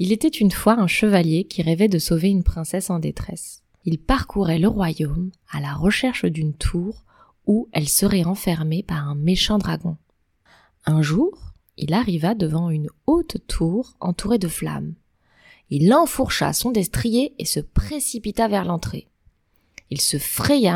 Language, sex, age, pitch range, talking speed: French, female, 20-39, 165-220 Hz, 155 wpm